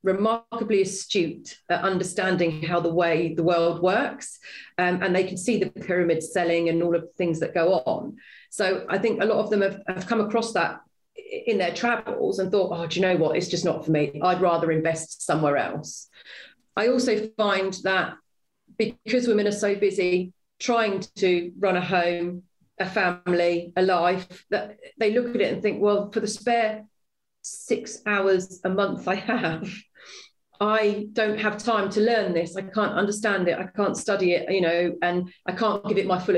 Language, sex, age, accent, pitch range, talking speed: English, female, 40-59, British, 180-215 Hz, 195 wpm